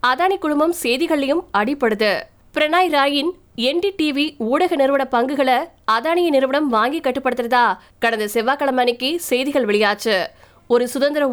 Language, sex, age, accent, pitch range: Tamil, female, 20-39, native, 240-300 Hz